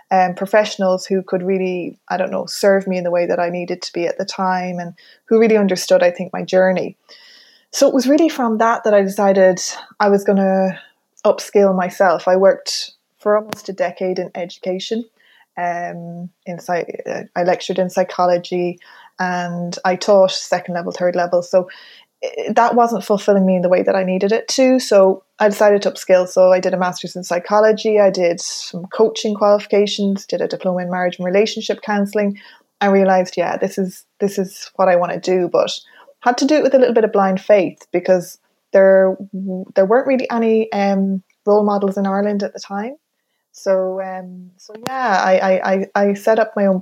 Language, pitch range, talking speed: English, 185-215 Hz, 195 wpm